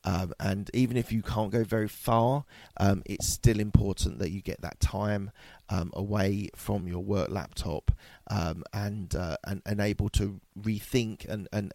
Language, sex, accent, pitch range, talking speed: English, male, British, 90-105 Hz, 175 wpm